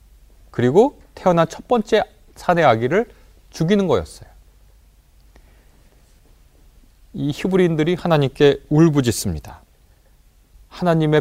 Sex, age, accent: male, 30-49, native